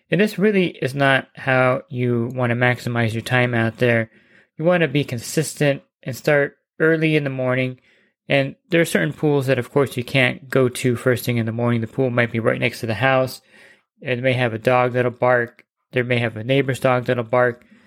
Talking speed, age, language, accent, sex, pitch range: 220 wpm, 20-39, English, American, male, 125-145 Hz